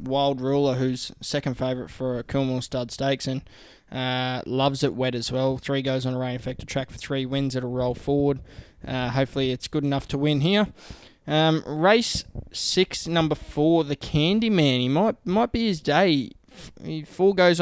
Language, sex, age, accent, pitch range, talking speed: English, male, 20-39, Australian, 125-150 Hz, 185 wpm